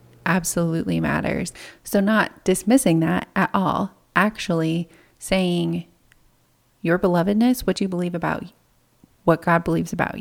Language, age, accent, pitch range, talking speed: English, 30-49, American, 165-190 Hz, 120 wpm